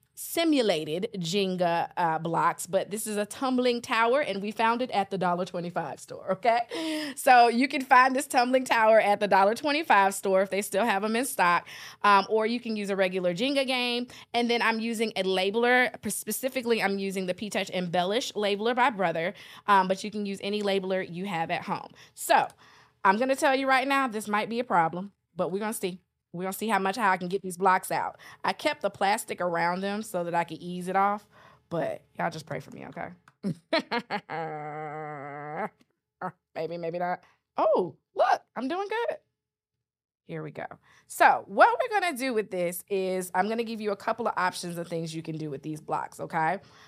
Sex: female